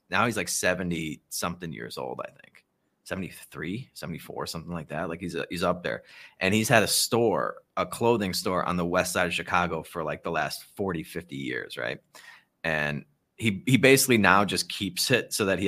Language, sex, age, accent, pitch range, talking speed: English, male, 30-49, American, 90-105 Hz, 200 wpm